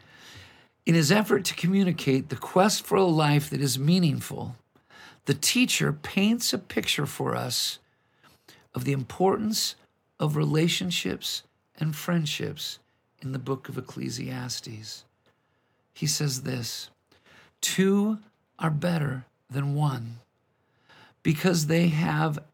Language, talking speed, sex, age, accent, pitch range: English, 115 wpm, male, 50-69, American, 125-160 Hz